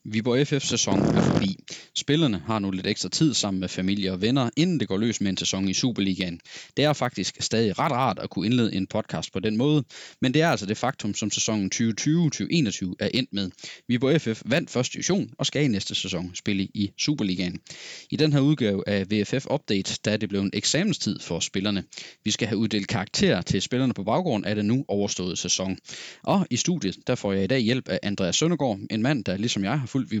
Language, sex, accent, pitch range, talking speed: Danish, male, native, 100-125 Hz, 230 wpm